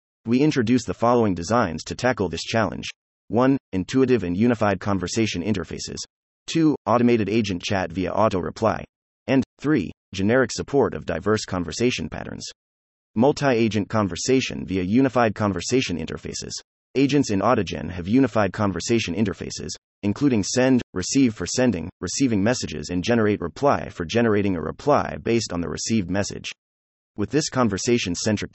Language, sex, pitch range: English, male, 90-120 Hz